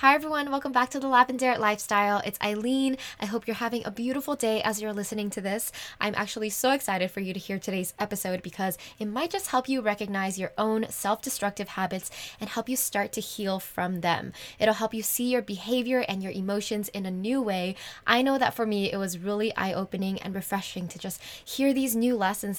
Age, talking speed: 10-29, 215 wpm